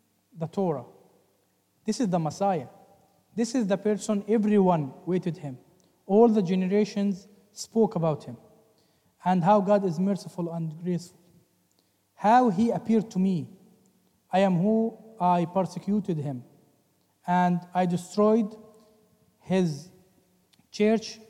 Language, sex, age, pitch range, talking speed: English, male, 40-59, 165-210 Hz, 115 wpm